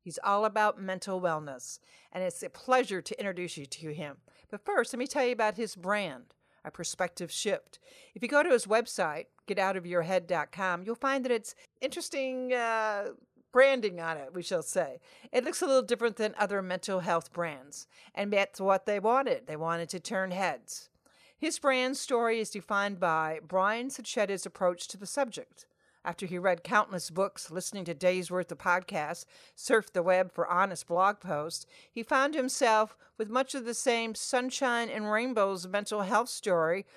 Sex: female